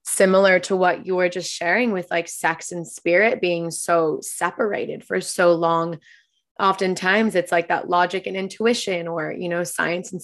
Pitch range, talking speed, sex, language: 170-195 Hz, 175 wpm, female, English